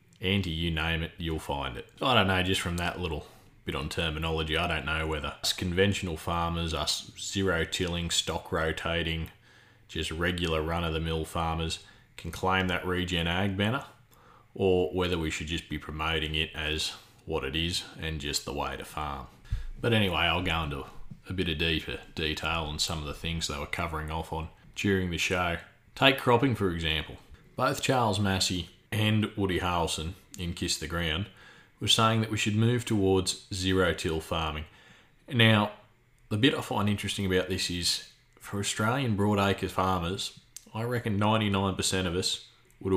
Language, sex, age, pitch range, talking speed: English, male, 30-49, 80-100 Hz, 170 wpm